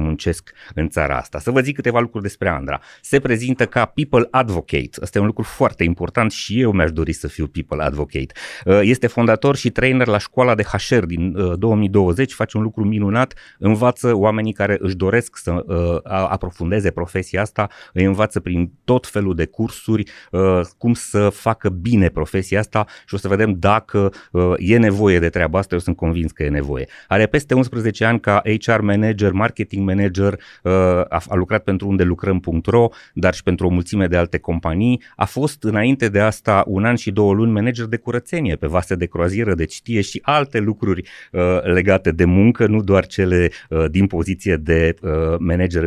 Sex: male